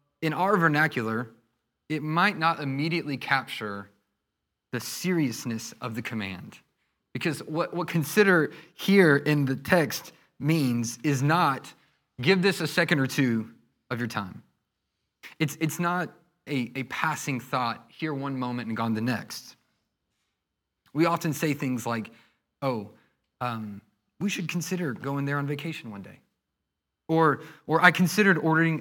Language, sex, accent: English, male, American